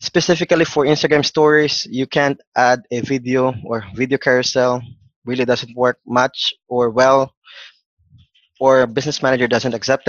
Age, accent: 20-39, Filipino